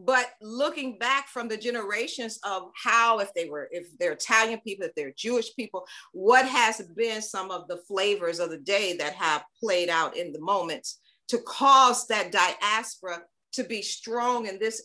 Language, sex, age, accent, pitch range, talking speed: English, female, 40-59, American, 200-270 Hz, 180 wpm